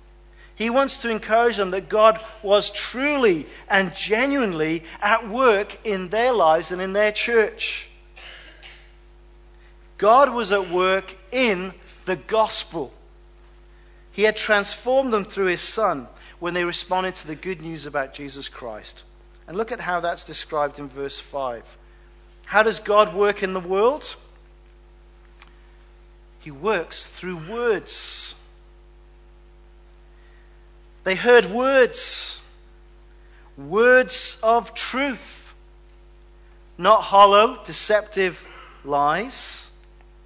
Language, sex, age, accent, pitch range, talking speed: English, male, 40-59, British, 160-215 Hz, 110 wpm